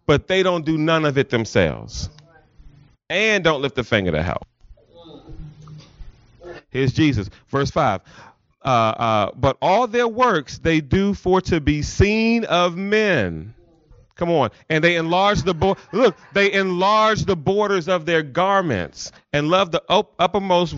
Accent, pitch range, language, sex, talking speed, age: American, 130-190 Hz, English, male, 150 wpm, 30-49